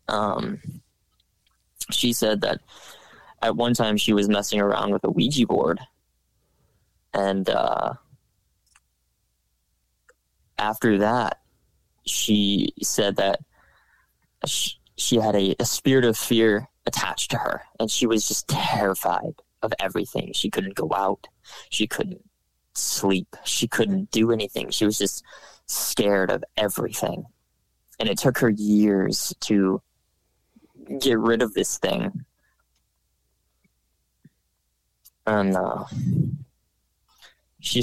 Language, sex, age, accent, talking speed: English, male, 20-39, American, 115 wpm